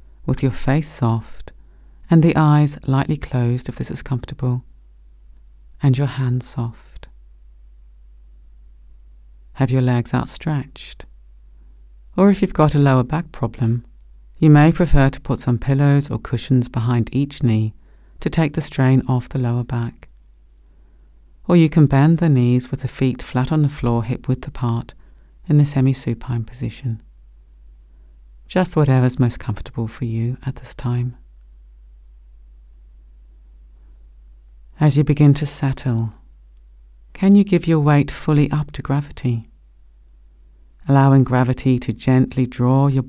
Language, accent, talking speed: English, British, 135 wpm